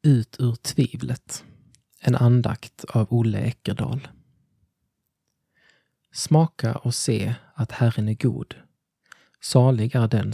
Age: 20-39